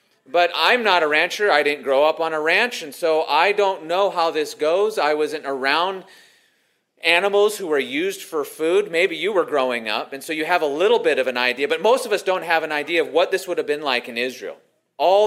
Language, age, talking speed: English, 30-49, 245 wpm